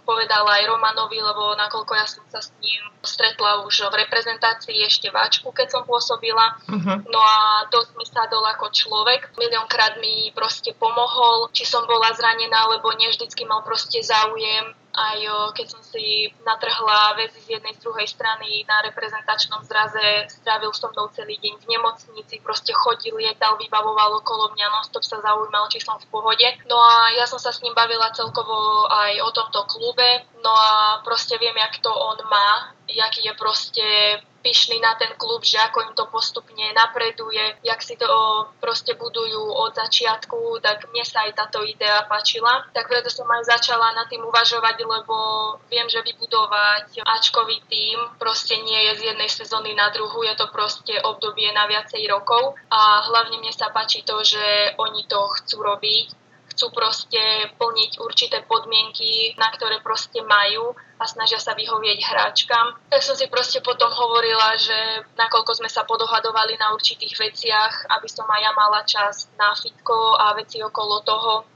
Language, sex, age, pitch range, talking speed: Slovak, female, 20-39, 215-230 Hz, 170 wpm